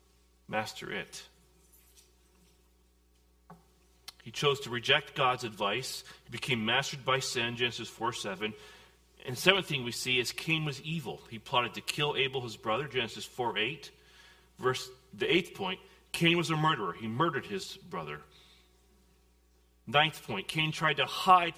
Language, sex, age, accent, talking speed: English, male, 40-59, American, 150 wpm